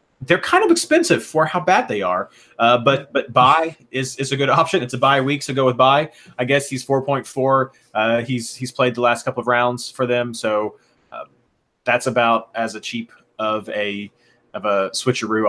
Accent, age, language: American, 30-49, English